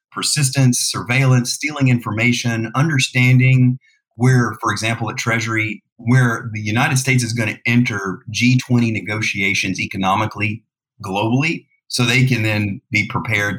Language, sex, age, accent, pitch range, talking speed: English, male, 30-49, American, 110-130 Hz, 125 wpm